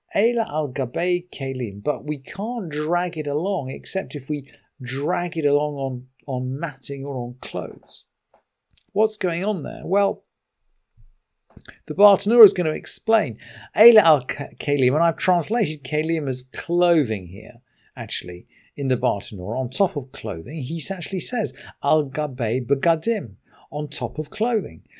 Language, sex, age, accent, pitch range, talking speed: English, male, 50-69, British, 130-185 Hz, 145 wpm